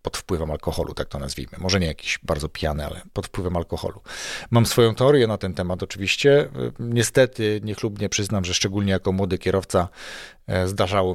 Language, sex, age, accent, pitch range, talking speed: Polish, male, 40-59, native, 95-115 Hz, 165 wpm